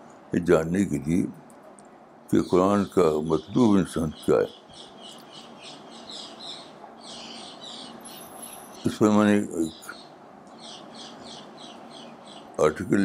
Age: 60-79